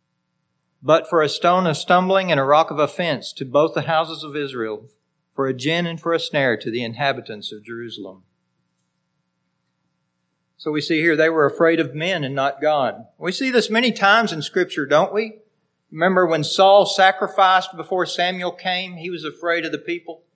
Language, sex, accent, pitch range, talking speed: English, male, American, 135-190 Hz, 185 wpm